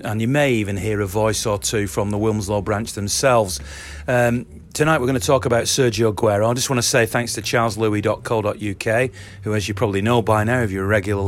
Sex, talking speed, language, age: male, 225 wpm, English, 40-59